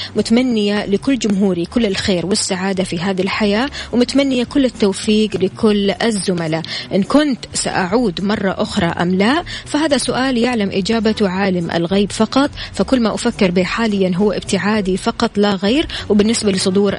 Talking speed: 140 wpm